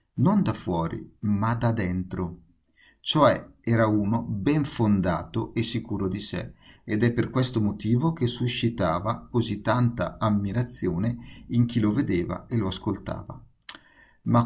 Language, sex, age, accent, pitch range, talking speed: Italian, male, 50-69, native, 95-125 Hz, 135 wpm